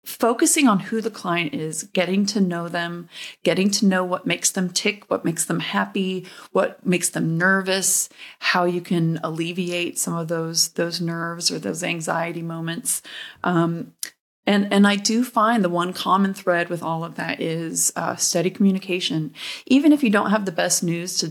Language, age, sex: English, 30-49, female